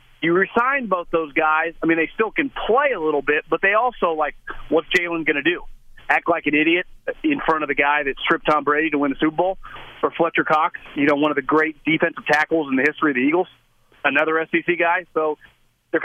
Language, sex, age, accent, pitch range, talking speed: English, male, 30-49, American, 150-175 Hz, 235 wpm